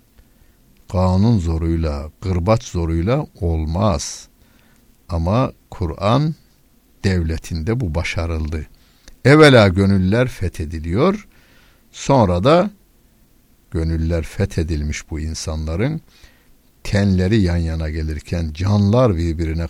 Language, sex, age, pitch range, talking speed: Turkish, male, 60-79, 80-105 Hz, 75 wpm